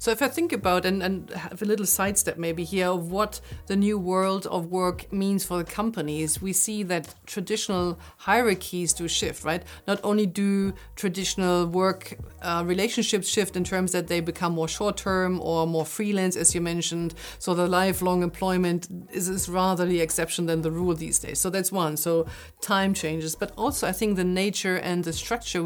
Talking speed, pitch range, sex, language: 195 wpm, 170-195 Hz, female, English